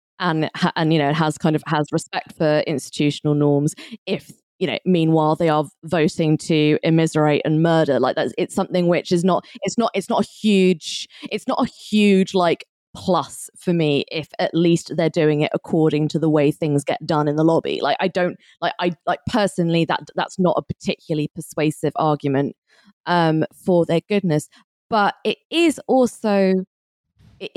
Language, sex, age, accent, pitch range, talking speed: English, female, 20-39, British, 155-195 Hz, 180 wpm